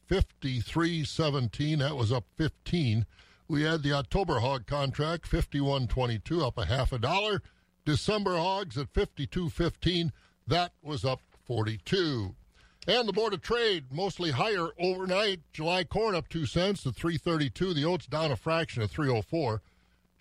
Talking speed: 135 wpm